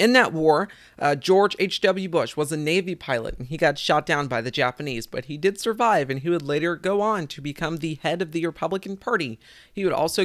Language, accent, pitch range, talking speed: English, American, 120-190 Hz, 235 wpm